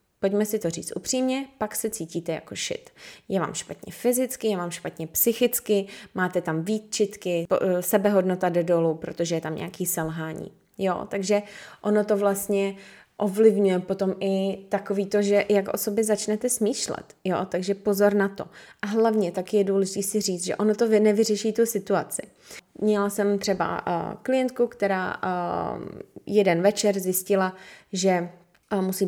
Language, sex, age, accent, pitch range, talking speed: Czech, female, 20-39, native, 185-215 Hz, 155 wpm